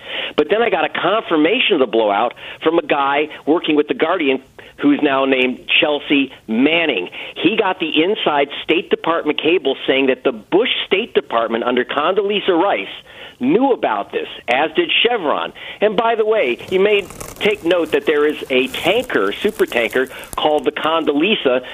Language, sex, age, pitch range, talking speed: English, male, 50-69, 135-210 Hz, 170 wpm